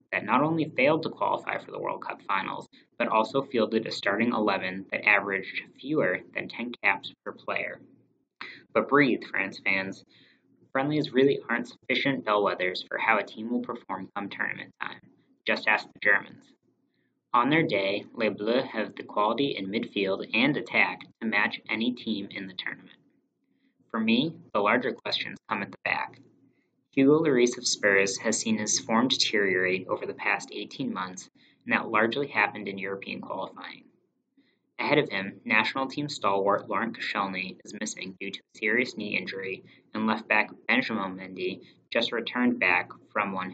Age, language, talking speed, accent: 10-29, English, 170 wpm, American